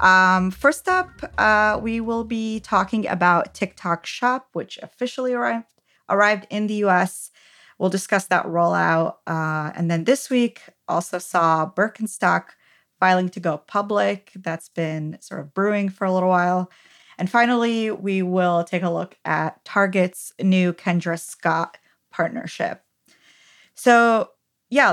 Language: English